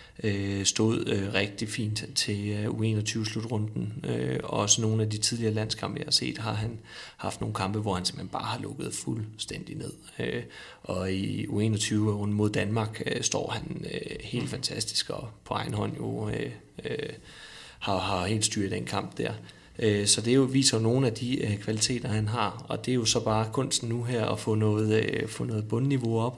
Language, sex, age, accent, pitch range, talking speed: Danish, male, 30-49, native, 105-120 Hz, 165 wpm